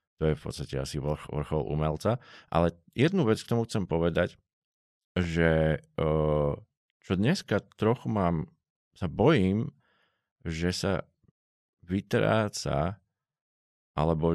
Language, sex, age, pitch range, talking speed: Slovak, male, 50-69, 80-95 Hz, 105 wpm